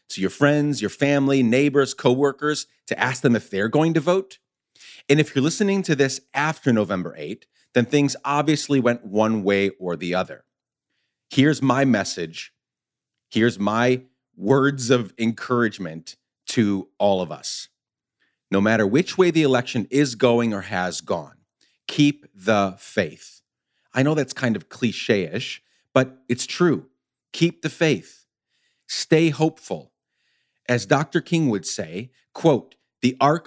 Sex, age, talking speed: male, 40-59, 145 wpm